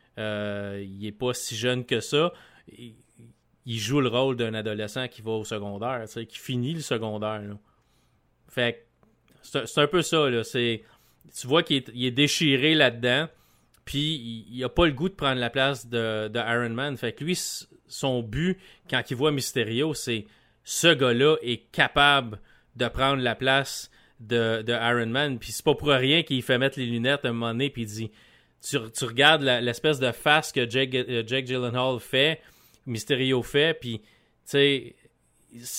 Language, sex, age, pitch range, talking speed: French, male, 30-49, 115-140 Hz, 185 wpm